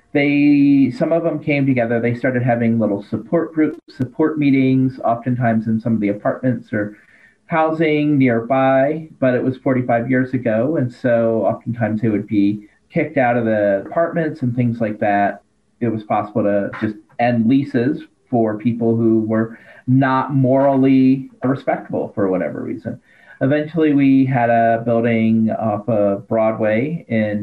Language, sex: English, male